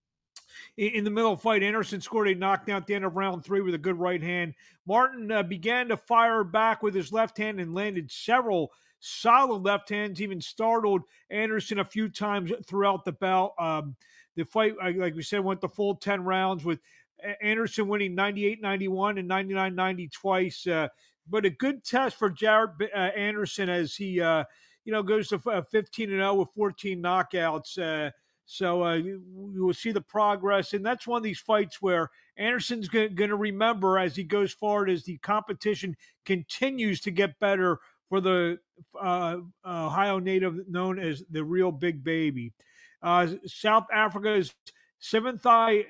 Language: English